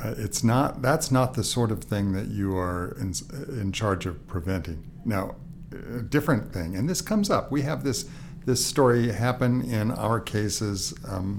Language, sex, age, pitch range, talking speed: English, male, 60-79, 95-120 Hz, 185 wpm